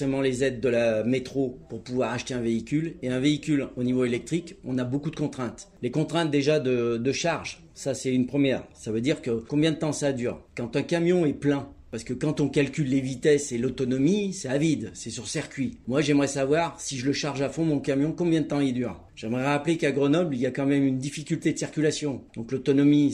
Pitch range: 125-150 Hz